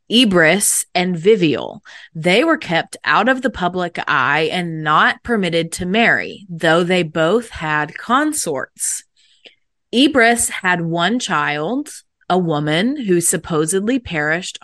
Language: English